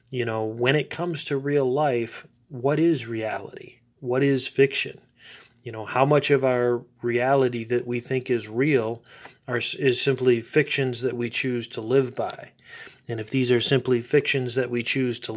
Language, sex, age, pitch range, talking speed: English, male, 30-49, 120-140 Hz, 180 wpm